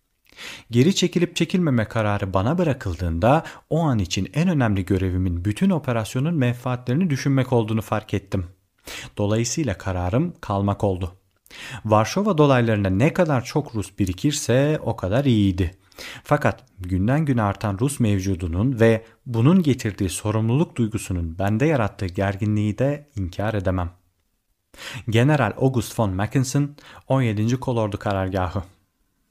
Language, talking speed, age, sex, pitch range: Turkish, 115 wpm, 40-59, male, 100-135 Hz